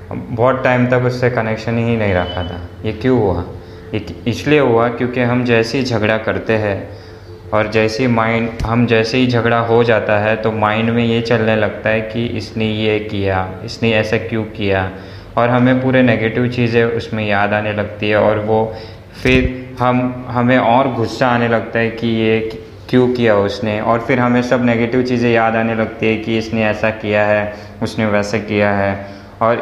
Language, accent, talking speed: Hindi, native, 190 wpm